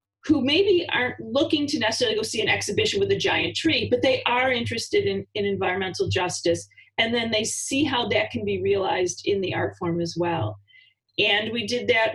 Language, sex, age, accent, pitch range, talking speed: English, female, 30-49, American, 200-275 Hz, 200 wpm